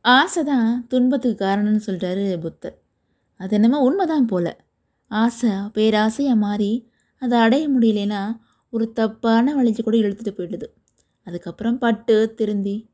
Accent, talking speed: native, 115 wpm